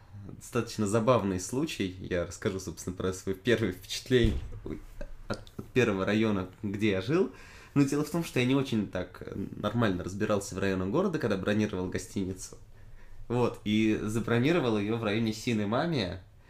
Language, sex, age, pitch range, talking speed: English, male, 20-39, 95-120 Hz, 145 wpm